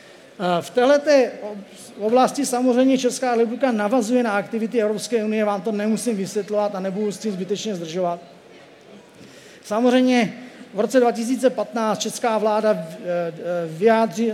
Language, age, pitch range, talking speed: Czech, 40-59, 205-245 Hz, 110 wpm